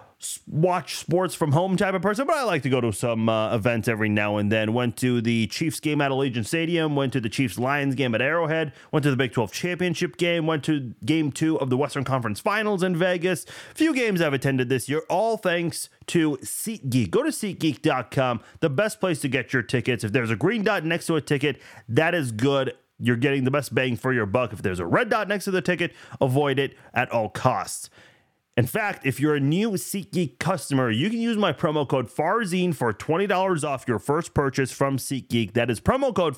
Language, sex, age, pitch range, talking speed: English, male, 30-49, 130-180 Hz, 225 wpm